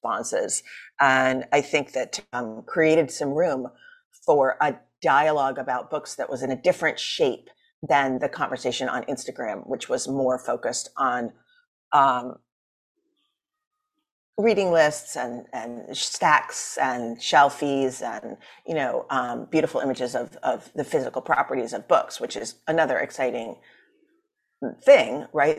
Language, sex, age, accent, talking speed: English, female, 30-49, American, 135 wpm